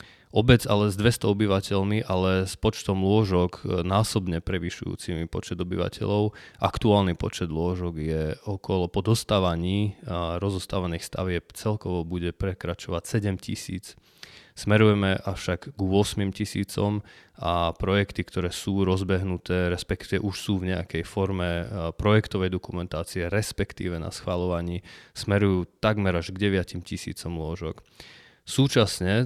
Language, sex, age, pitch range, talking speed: Slovak, male, 20-39, 90-105 Hz, 115 wpm